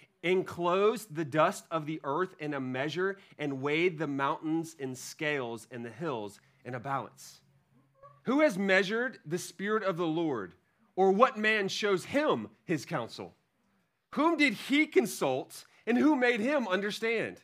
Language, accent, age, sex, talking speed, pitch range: English, American, 30-49, male, 155 wpm, 140-205 Hz